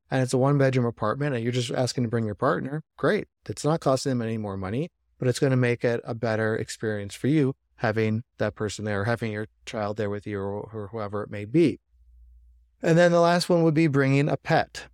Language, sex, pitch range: English, male, 110-140 Hz